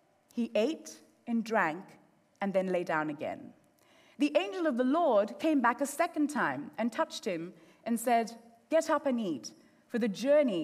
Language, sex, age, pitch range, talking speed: English, female, 30-49, 240-315 Hz, 175 wpm